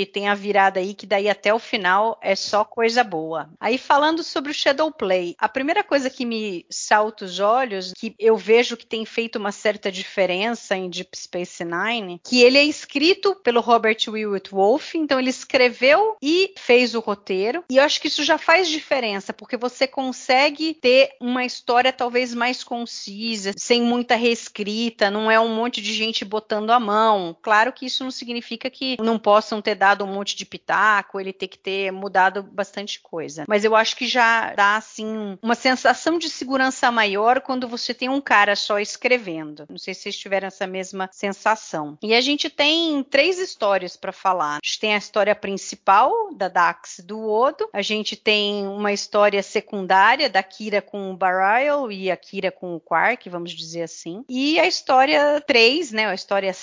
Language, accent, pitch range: Portuguese, Brazilian, 195-250 Hz